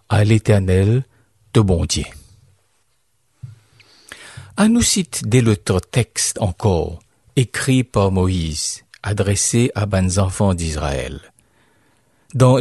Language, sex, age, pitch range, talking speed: French, male, 50-69, 100-130 Hz, 85 wpm